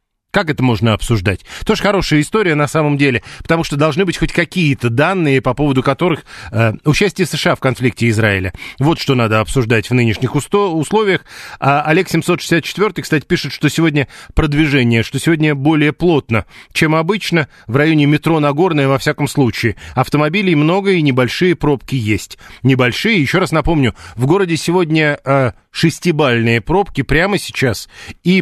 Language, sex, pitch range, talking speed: Russian, male, 125-165 Hz, 150 wpm